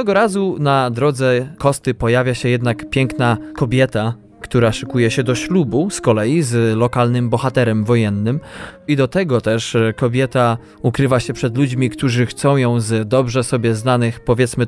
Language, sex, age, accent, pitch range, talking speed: Polish, male, 20-39, native, 115-130 Hz, 155 wpm